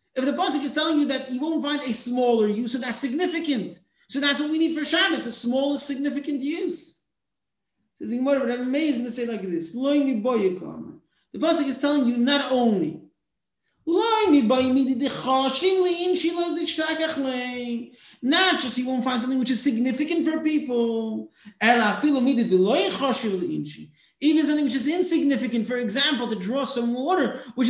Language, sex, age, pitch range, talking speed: English, male, 40-59, 235-300 Hz, 135 wpm